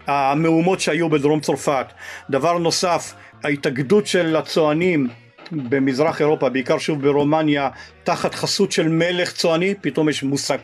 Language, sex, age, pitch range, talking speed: Hebrew, male, 50-69, 145-180 Hz, 125 wpm